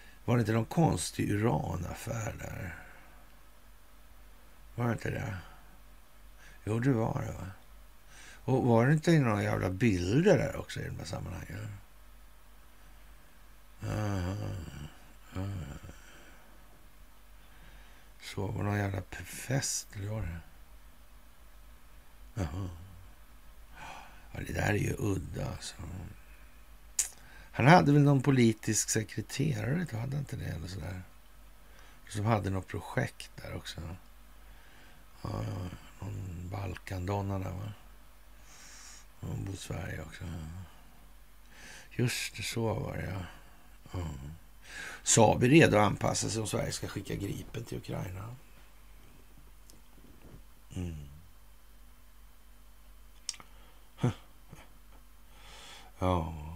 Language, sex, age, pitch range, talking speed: Swedish, male, 60-79, 80-110 Hz, 95 wpm